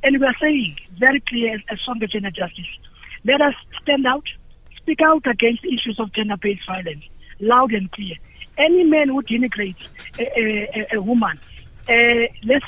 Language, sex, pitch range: English, female, 215-275 Hz